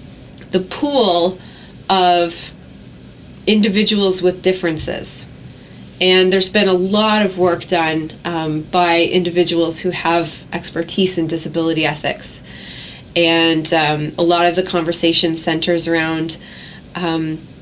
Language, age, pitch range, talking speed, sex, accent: English, 30-49, 170-195 Hz, 110 wpm, female, American